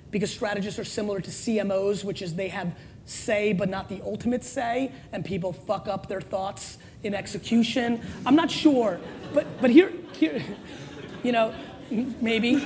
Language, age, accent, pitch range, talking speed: English, 30-49, American, 225-295 Hz, 160 wpm